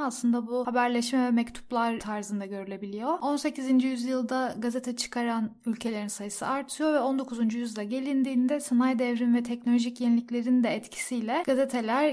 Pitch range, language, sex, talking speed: 235-260 Hz, Turkish, female, 130 wpm